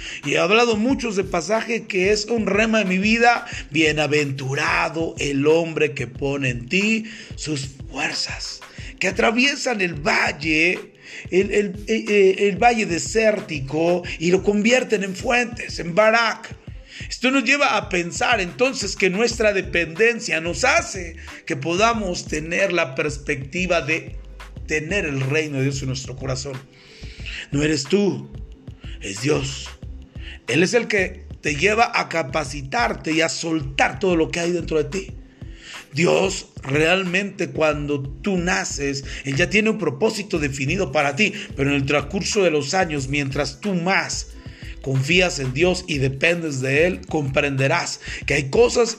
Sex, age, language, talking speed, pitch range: male, 40-59, Spanish, 145 wpm, 145-205 Hz